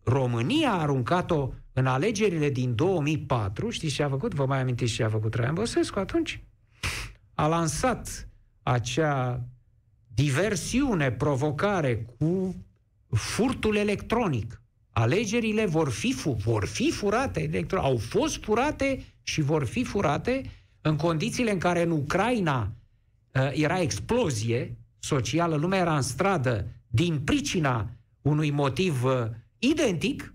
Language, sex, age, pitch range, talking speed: Romanian, male, 60-79, 120-200 Hz, 115 wpm